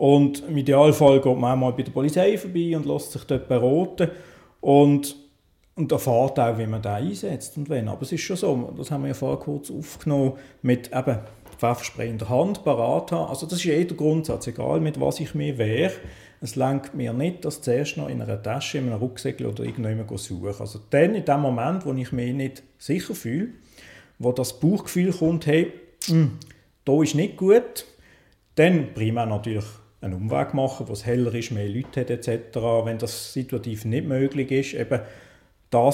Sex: male